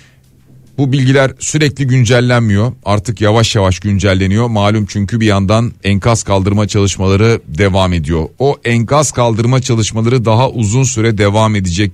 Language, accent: Turkish, native